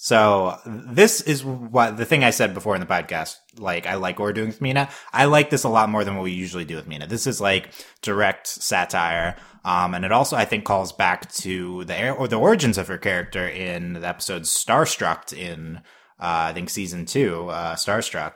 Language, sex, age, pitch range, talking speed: English, male, 20-39, 85-110 Hz, 215 wpm